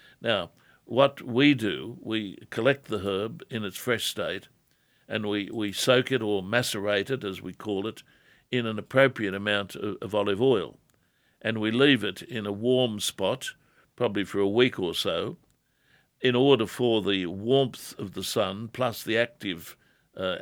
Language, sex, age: English, male, 60-79